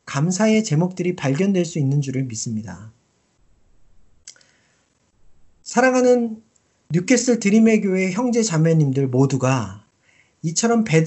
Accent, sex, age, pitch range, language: native, male, 40-59, 145-215 Hz, Korean